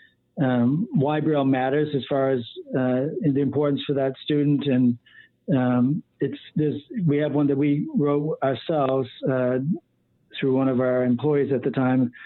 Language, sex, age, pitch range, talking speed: English, male, 60-79, 135-155 Hz, 155 wpm